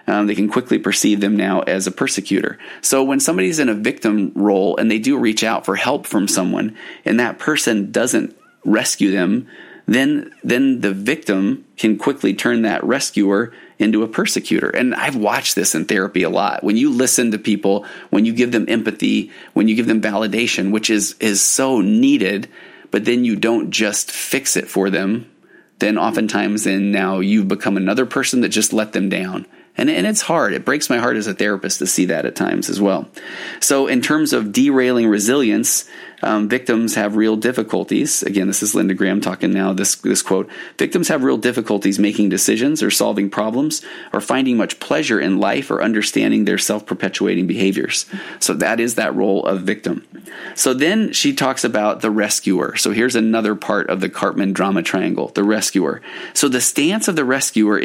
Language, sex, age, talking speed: English, male, 30-49, 190 wpm